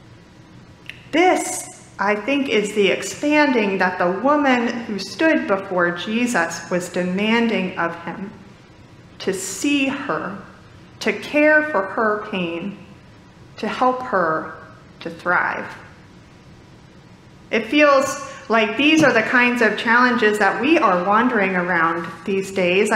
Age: 30-49